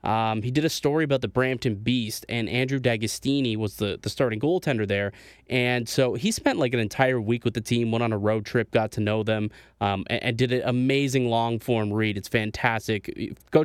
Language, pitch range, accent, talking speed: English, 110-130 Hz, American, 215 wpm